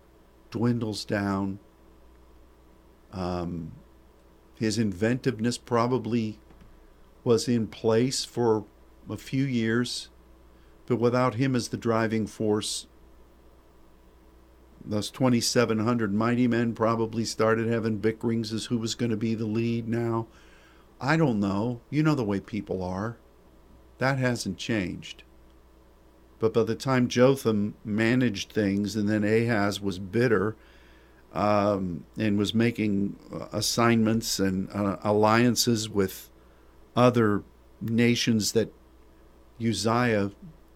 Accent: American